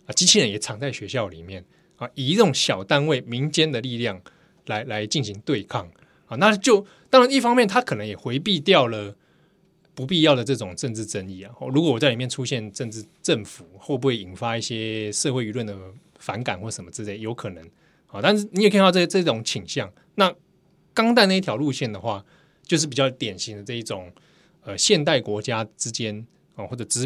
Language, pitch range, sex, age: Chinese, 110-175 Hz, male, 20-39